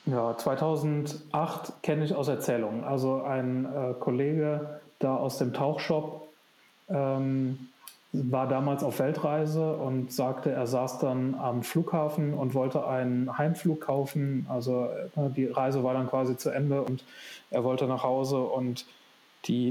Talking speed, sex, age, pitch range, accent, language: 140 wpm, male, 30-49, 125-145 Hz, German, German